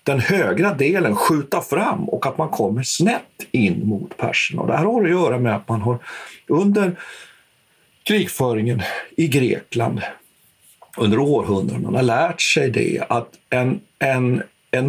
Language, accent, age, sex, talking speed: Swedish, native, 50-69, male, 145 wpm